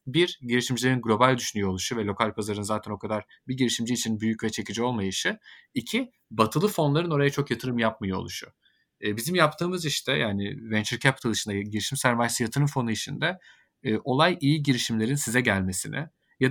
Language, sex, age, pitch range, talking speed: Turkish, male, 30-49, 115-150 Hz, 165 wpm